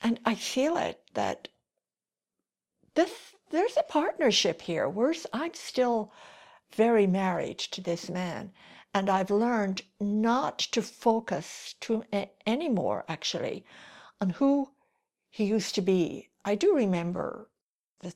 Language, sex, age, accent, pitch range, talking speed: English, female, 60-79, American, 185-245 Hz, 125 wpm